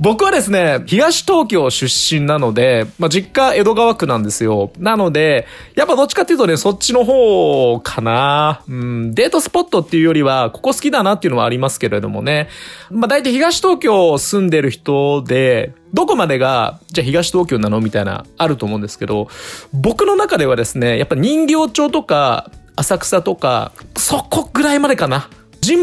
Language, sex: Japanese, male